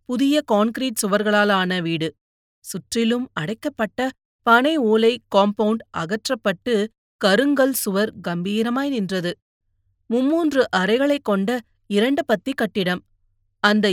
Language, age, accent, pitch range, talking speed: Tamil, 30-49, native, 190-235 Hz, 90 wpm